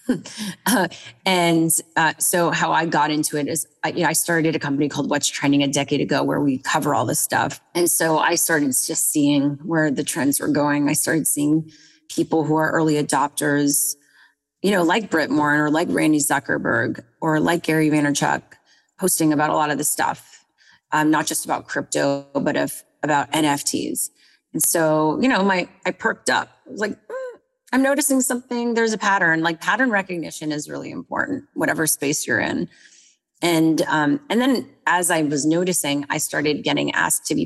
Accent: American